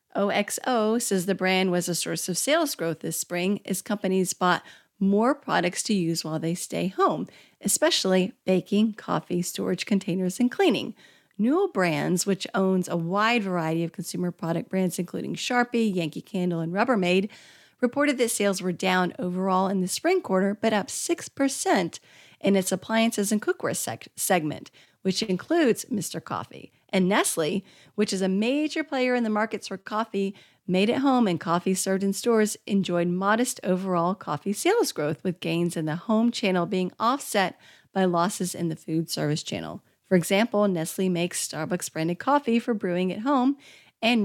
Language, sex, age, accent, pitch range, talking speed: English, female, 40-59, American, 180-225 Hz, 165 wpm